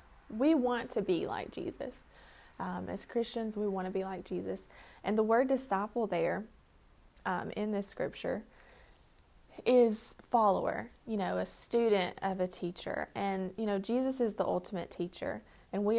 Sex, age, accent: female, 20-39, American